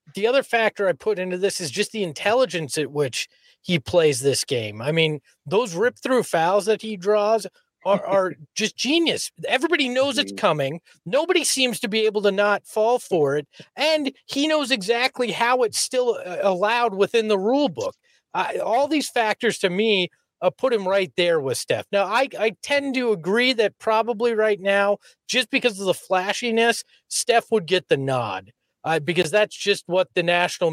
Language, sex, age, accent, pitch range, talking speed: English, male, 40-59, American, 165-225 Hz, 185 wpm